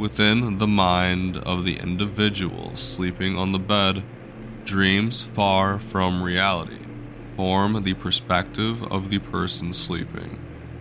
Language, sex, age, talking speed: English, male, 20-39, 115 wpm